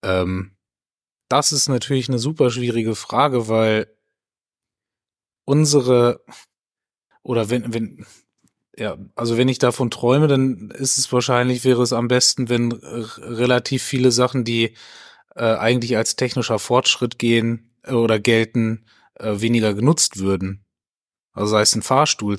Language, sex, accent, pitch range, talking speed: German, male, German, 105-125 Hz, 130 wpm